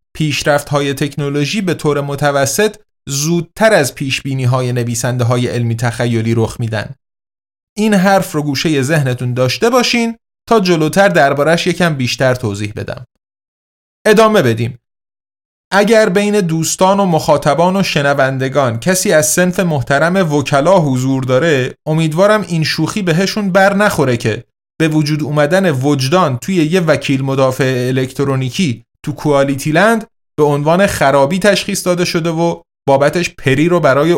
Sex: male